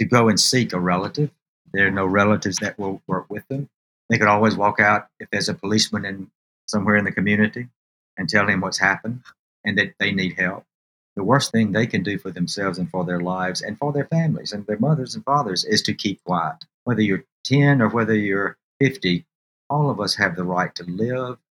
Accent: American